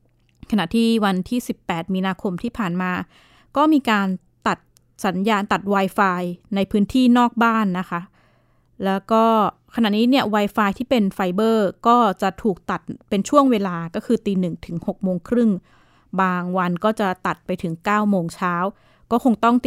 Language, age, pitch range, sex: Thai, 20-39, 185-230 Hz, female